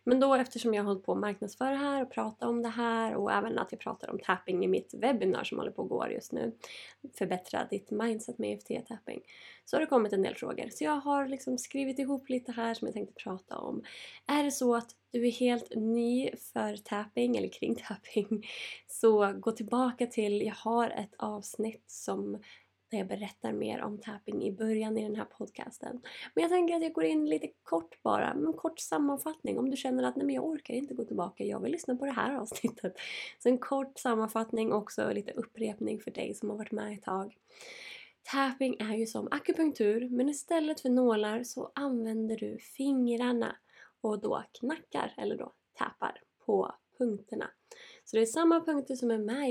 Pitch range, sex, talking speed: 215-270 Hz, female, 200 wpm